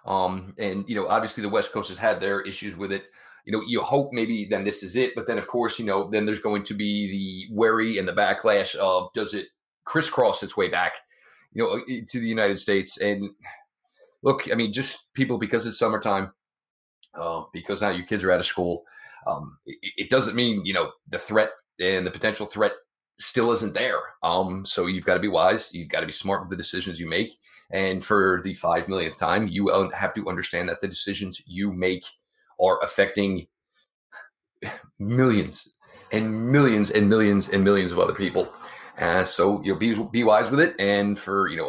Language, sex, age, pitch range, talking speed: English, male, 30-49, 95-115 Hz, 205 wpm